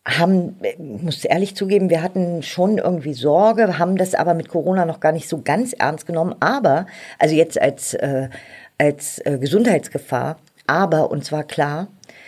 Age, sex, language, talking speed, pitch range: 50-69, female, German, 160 wpm, 150-190 Hz